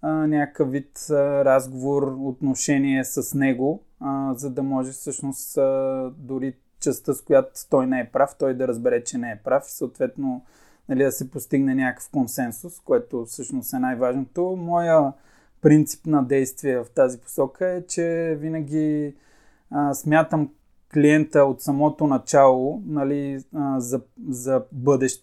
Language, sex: Bulgarian, male